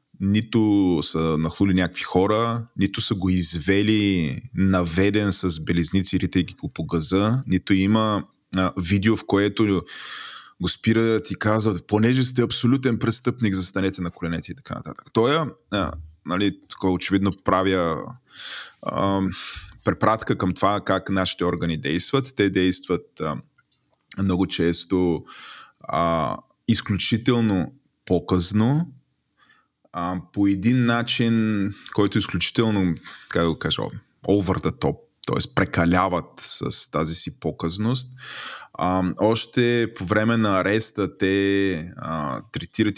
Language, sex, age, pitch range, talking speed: Bulgarian, male, 20-39, 90-110 Hz, 115 wpm